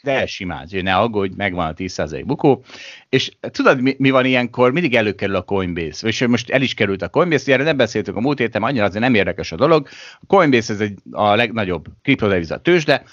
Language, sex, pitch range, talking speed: Hungarian, male, 95-130 Hz, 210 wpm